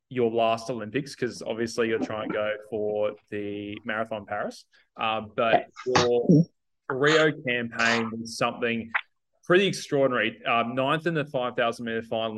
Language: English